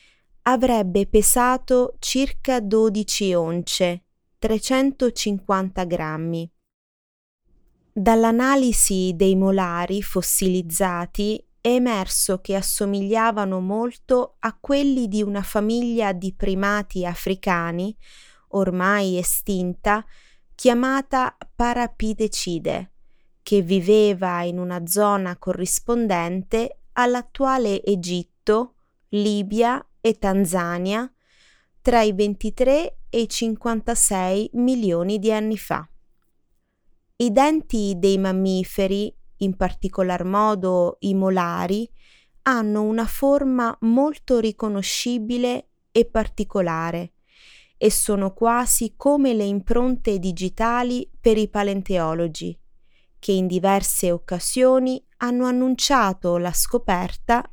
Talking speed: 85 wpm